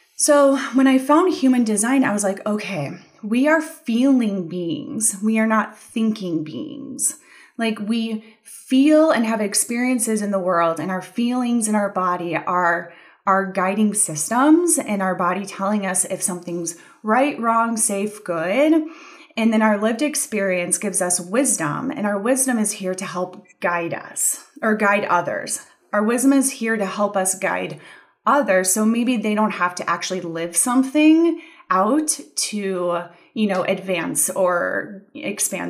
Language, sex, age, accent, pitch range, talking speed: English, female, 20-39, American, 190-265 Hz, 160 wpm